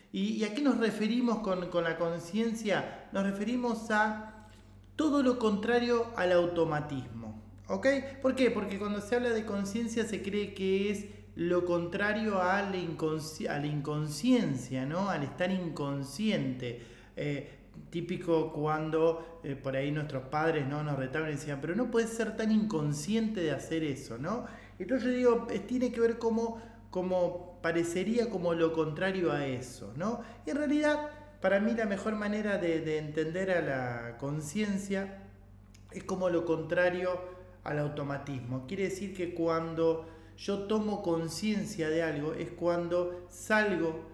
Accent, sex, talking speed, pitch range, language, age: Argentinian, male, 155 wpm, 145-210 Hz, Spanish, 20-39